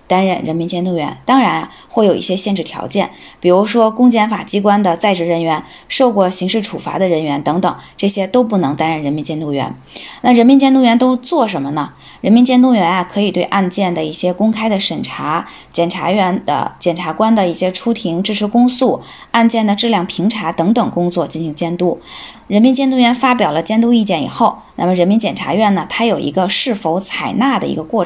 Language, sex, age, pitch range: Chinese, female, 20-39, 170-230 Hz